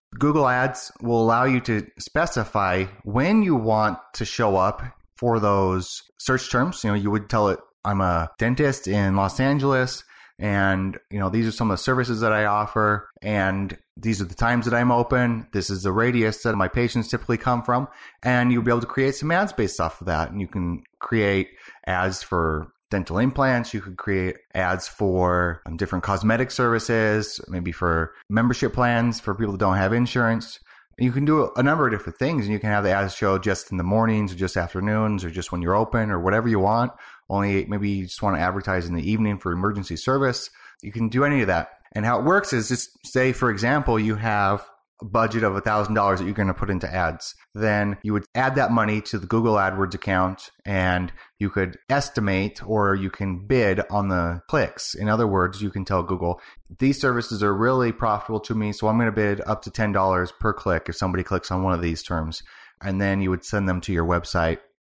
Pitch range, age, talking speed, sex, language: 95-115 Hz, 30-49, 215 wpm, male, English